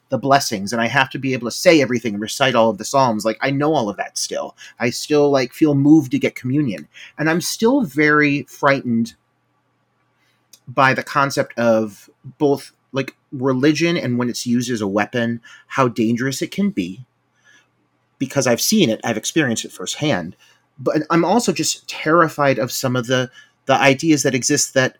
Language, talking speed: English, 185 wpm